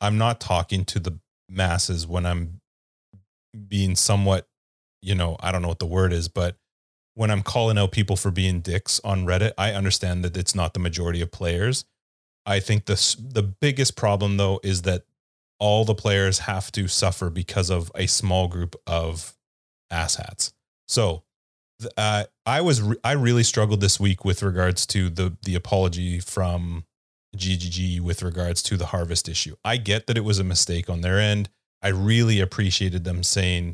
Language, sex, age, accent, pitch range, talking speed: English, male, 30-49, American, 90-110 Hz, 180 wpm